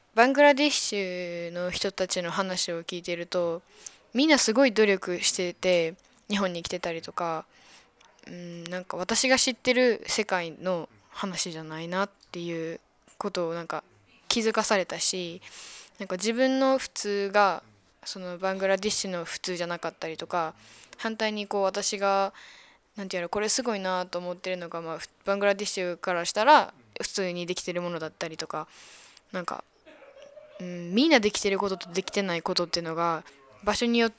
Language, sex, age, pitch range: Japanese, female, 10-29, 175-210 Hz